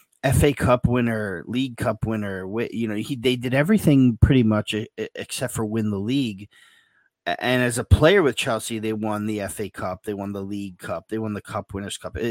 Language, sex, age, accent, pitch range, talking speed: English, male, 30-49, American, 105-135 Hz, 205 wpm